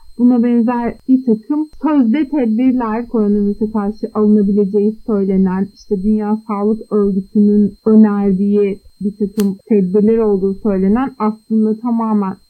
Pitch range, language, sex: 210-250 Hz, Turkish, female